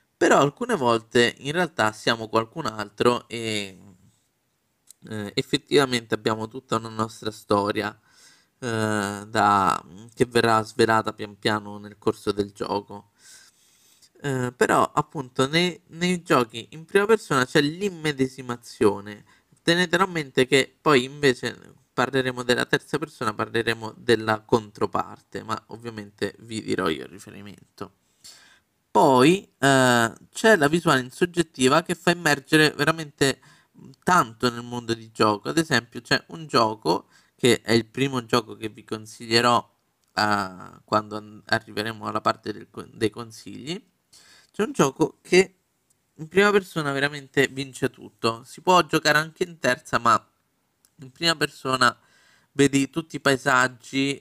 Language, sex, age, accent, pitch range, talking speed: Italian, male, 20-39, native, 110-145 Hz, 130 wpm